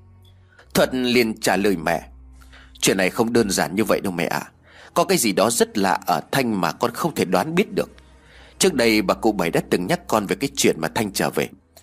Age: 30-49